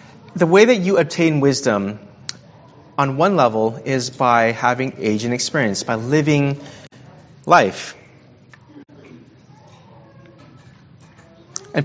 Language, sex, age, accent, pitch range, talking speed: English, male, 30-49, American, 130-160 Hz, 95 wpm